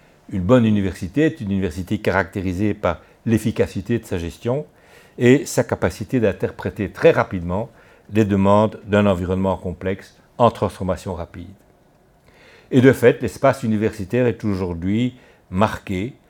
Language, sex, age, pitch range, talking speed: French, male, 60-79, 90-115 Hz, 125 wpm